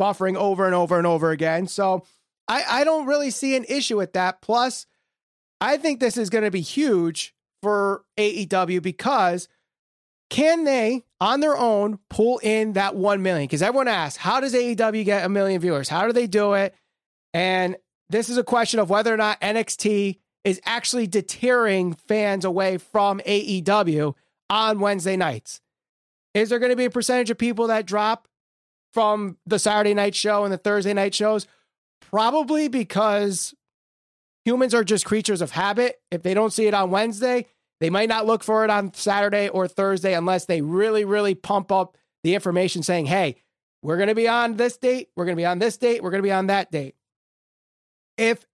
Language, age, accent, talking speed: English, 30-49, American, 190 wpm